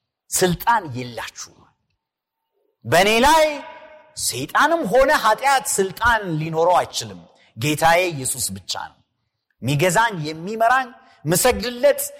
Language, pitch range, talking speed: Amharic, 165-265 Hz, 85 wpm